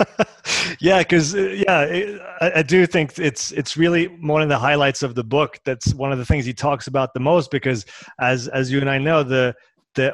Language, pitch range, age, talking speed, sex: French, 120-145 Hz, 30-49, 205 wpm, male